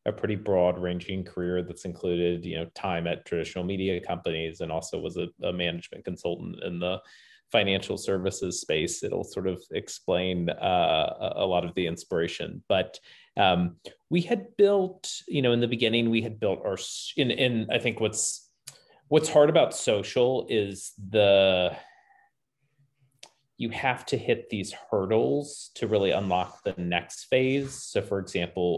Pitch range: 85-120 Hz